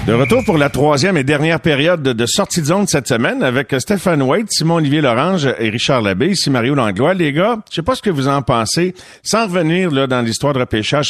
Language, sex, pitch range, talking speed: French, male, 110-150 Hz, 220 wpm